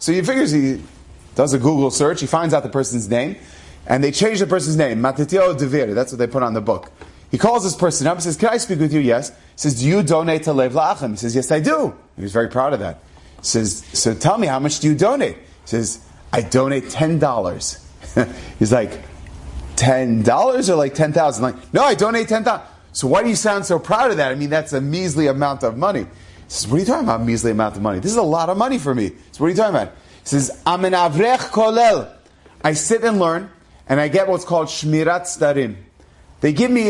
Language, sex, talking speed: English, male, 235 wpm